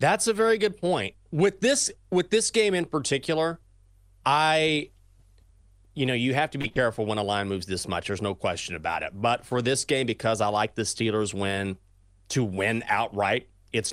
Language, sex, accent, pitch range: English, male, American, 100-150 Hz